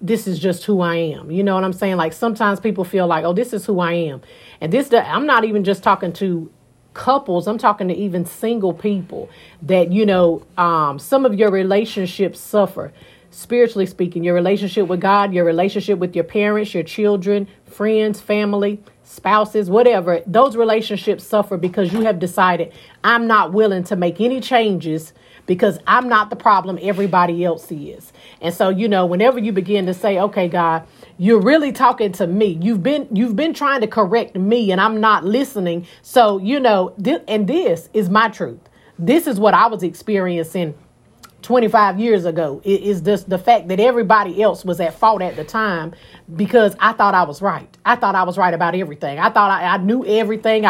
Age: 40-59